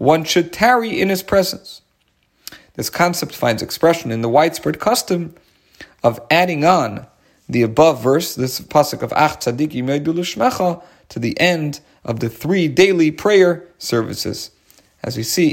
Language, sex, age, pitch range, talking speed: English, male, 40-59, 125-185 Hz, 140 wpm